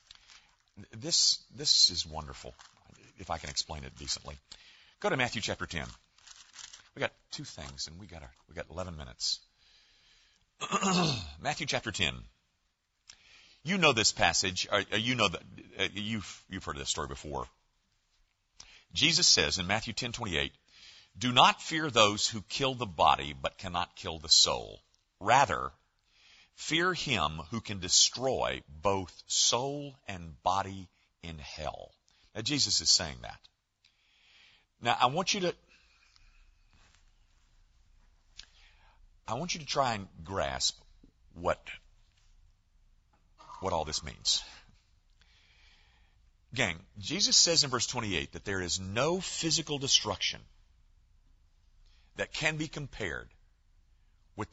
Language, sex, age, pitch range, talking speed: English, male, 50-69, 85-115 Hz, 125 wpm